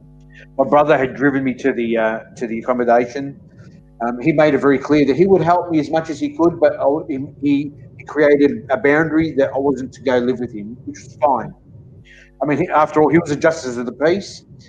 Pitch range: 130-150 Hz